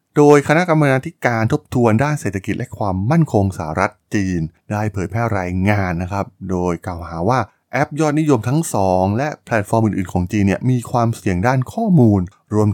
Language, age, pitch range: Thai, 20-39, 95-125 Hz